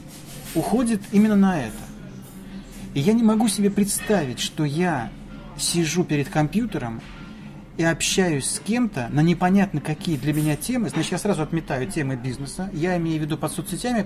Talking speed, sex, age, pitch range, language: 160 wpm, male, 30-49, 135-185 Hz, Russian